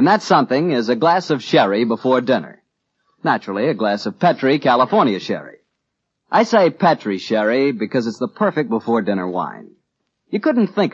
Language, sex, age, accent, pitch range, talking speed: English, male, 50-69, American, 110-155 Hz, 165 wpm